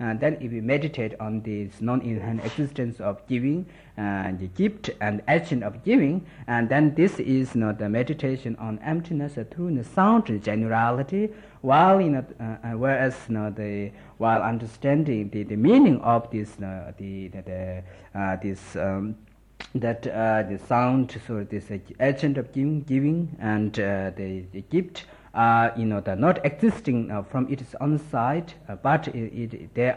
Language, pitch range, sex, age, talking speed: Italian, 105-145 Hz, male, 50-69, 180 wpm